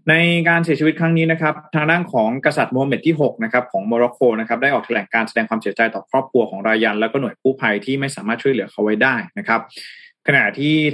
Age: 20-39